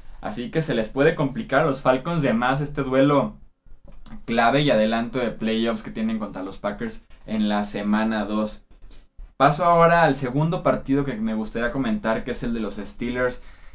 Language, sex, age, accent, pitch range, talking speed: Spanish, male, 20-39, Mexican, 110-130 Hz, 185 wpm